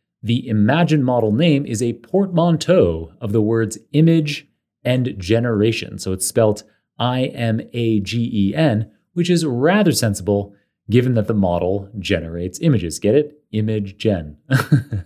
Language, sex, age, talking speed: English, male, 30-49, 120 wpm